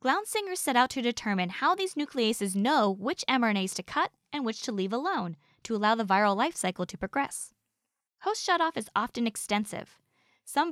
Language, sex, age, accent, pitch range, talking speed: English, female, 10-29, American, 200-290 Hz, 180 wpm